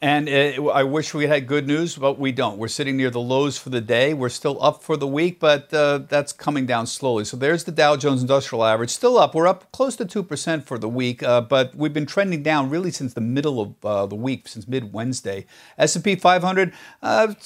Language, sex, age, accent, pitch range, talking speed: English, male, 50-69, American, 125-170 Hz, 230 wpm